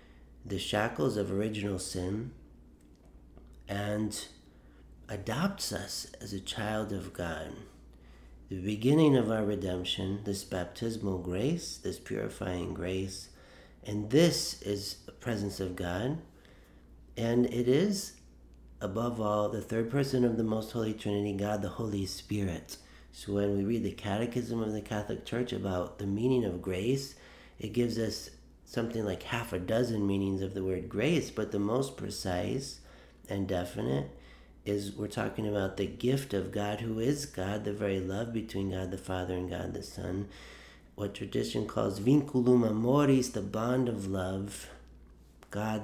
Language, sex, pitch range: English, male, 90-115 Hz